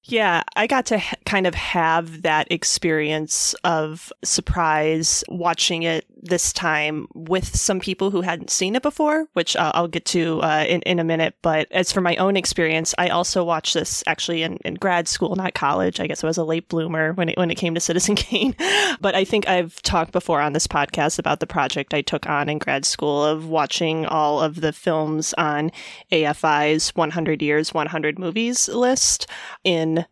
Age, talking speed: 20-39, 195 wpm